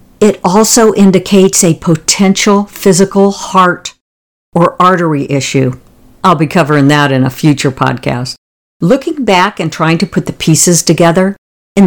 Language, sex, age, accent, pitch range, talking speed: English, female, 60-79, American, 145-190 Hz, 140 wpm